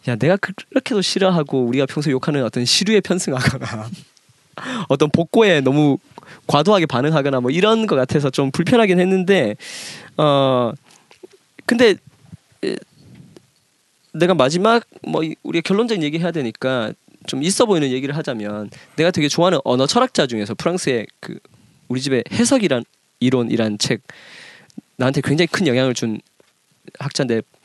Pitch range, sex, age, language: 130-185 Hz, male, 20-39, Korean